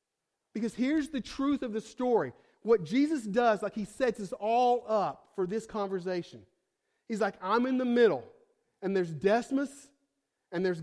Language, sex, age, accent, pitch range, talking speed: English, male, 40-59, American, 185-260 Hz, 165 wpm